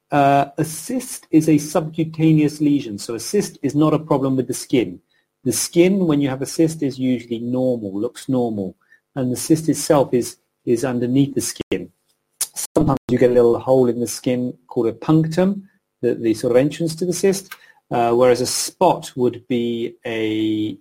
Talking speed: 185 wpm